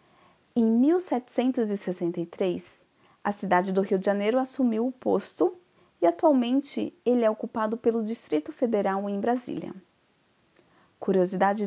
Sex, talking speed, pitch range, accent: female, 115 wpm, 195-265 Hz, Brazilian